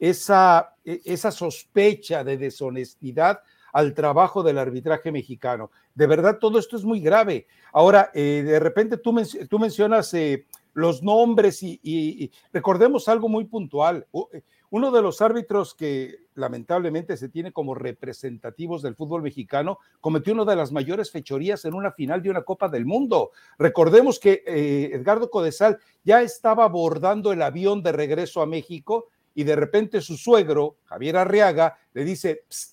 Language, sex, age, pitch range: Spanish, male, 60-79, 150-210 Hz